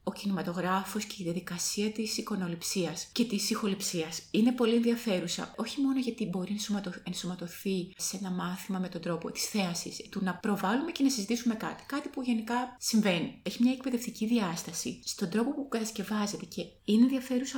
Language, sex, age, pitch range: Greek, female, 30-49, 195-235 Hz